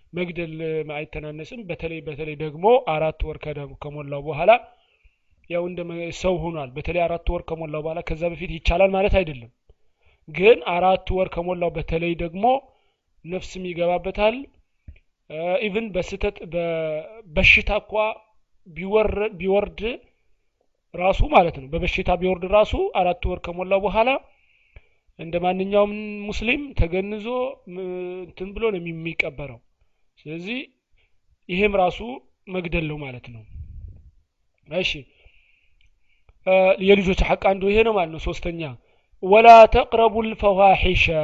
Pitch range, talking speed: 165-205 Hz, 90 wpm